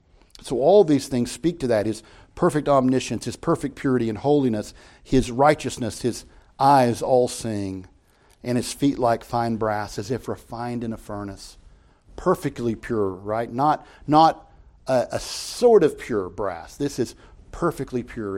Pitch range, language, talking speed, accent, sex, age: 105-140 Hz, English, 155 wpm, American, male, 50-69